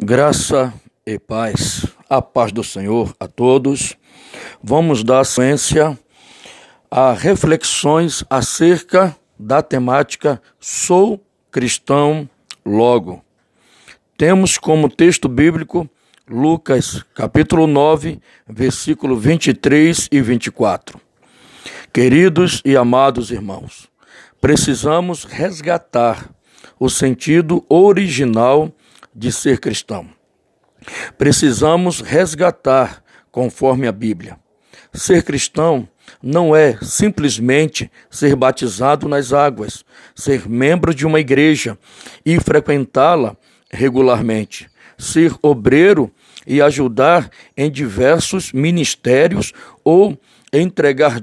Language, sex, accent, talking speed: Portuguese, male, Brazilian, 85 wpm